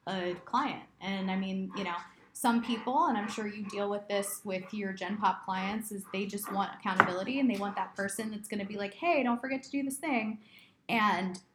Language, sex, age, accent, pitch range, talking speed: English, female, 20-39, American, 185-210 Hz, 230 wpm